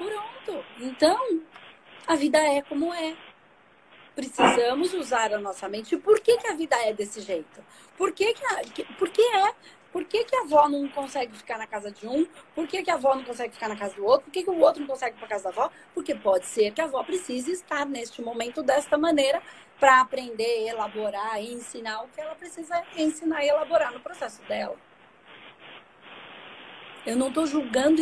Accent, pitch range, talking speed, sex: Brazilian, 225-325 Hz, 195 wpm, female